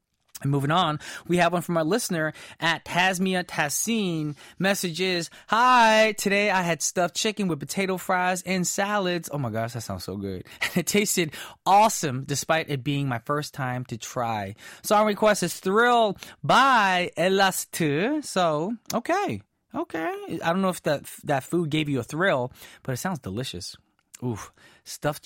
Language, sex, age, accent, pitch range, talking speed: English, male, 20-39, American, 120-185 Hz, 165 wpm